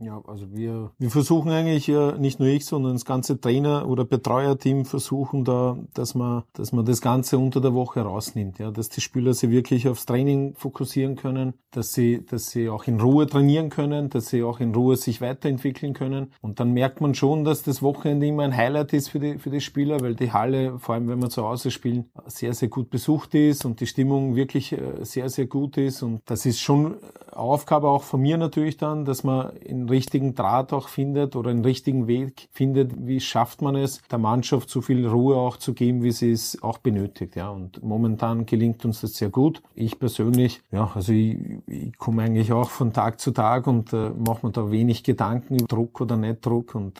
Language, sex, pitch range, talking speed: German, male, 115-135 Hz, 215 wpm